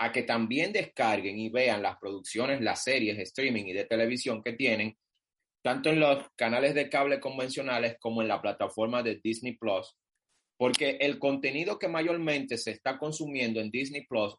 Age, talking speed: 30-49, 175 wpm